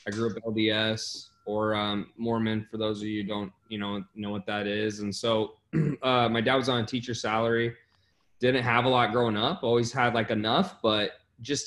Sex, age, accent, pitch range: male, 20-39, American, 105-115 Hz